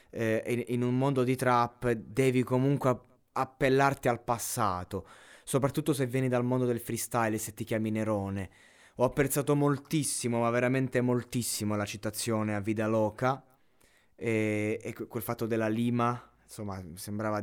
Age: 20-39